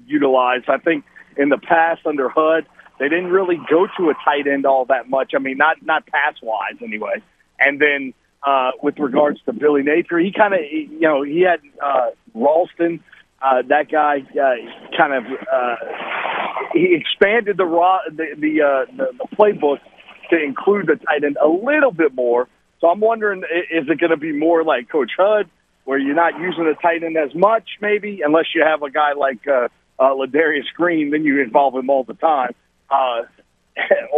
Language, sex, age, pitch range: English, male, 40-59, 135-170 Hz